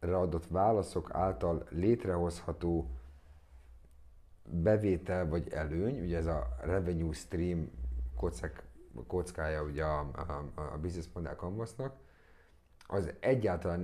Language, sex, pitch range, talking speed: Hungarian, male, 80-90 Hz, 95 wpm